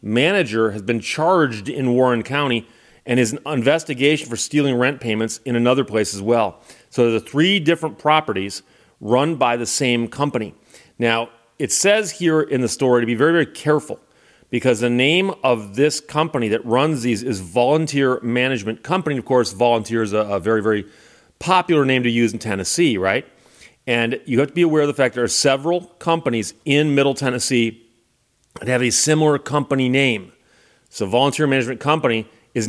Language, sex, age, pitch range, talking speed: English, male, 40-59, 115-145 Hz, 180 wpm